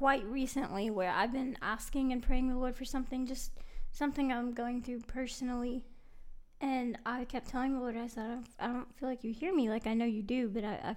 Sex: female